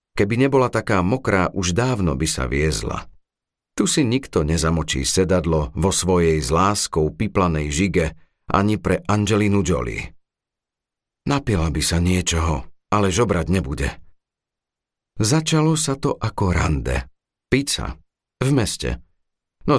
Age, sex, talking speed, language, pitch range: 50-69, male, 120 wpm, Slovak, 80-120 Hz